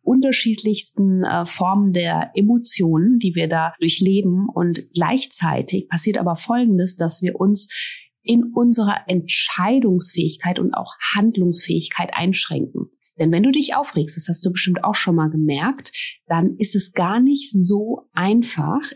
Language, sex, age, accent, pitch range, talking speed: German, female, 30-49, German, 165-210 Hz, 135 wpm